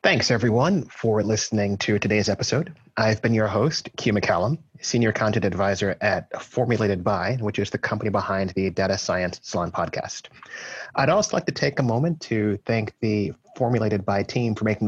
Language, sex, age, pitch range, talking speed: English, male, 30-49, 100-125 Hz, 180 wpm